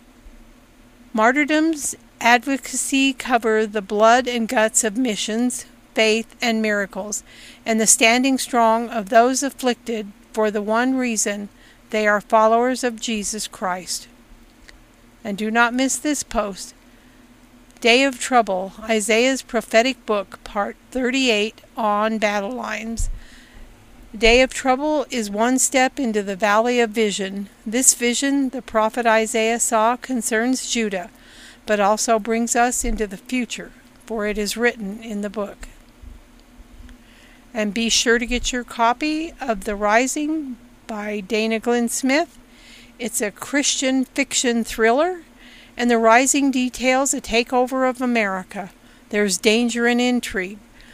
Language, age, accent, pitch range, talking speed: English, 50-69, American, 220-255 Hz, 130 wpm